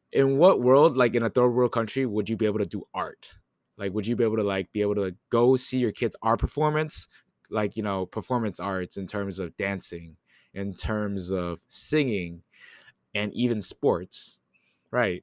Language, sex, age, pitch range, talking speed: English, male, 20-39, 90-105 Hz, 195 wpm